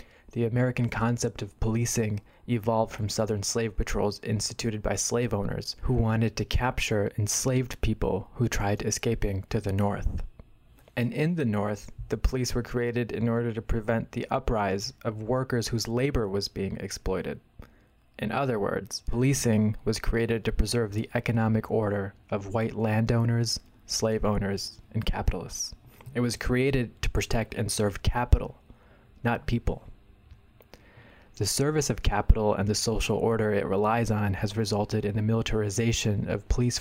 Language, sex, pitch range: English, male, 105-120 Hz